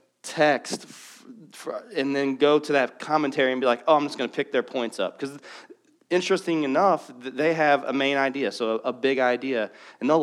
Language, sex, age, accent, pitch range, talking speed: English, male, 30-49, American, 125-165 Hz, 195 wpm